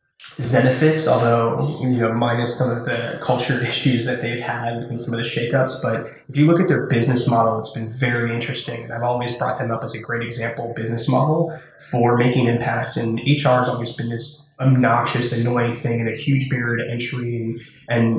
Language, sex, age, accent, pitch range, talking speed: English, male, 20-39, American, 120-135 Hz, 205 wpm